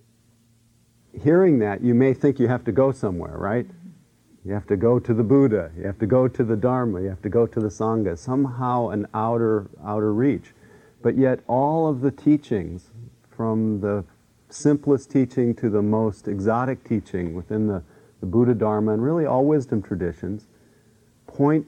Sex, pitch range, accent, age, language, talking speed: male, 105-125 Hz, American, 50-69, English, 175 wpm